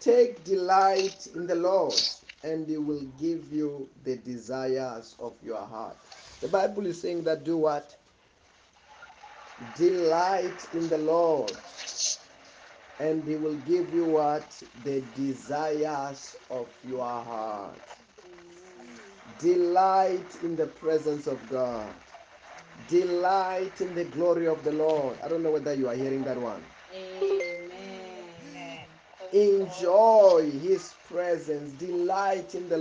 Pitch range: 150-195 Hz